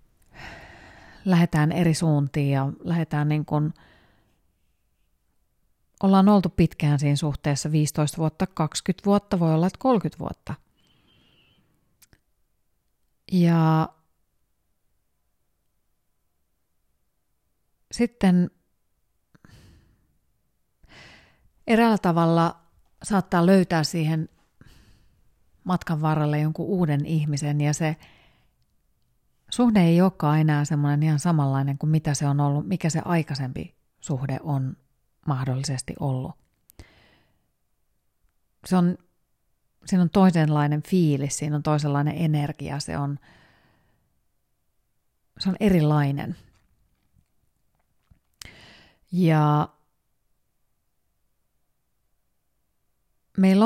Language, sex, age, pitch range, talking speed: Finnish, female, 30-49, 145-175 Hz, 80 wpm